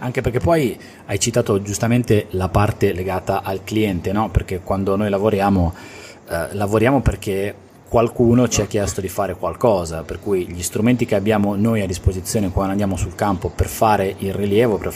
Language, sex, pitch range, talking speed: Italian, male, 95-115 Hz, 175 wpm